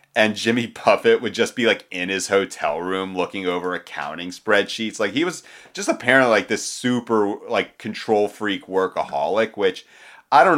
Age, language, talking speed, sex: 30-49, English, 170 wpm, male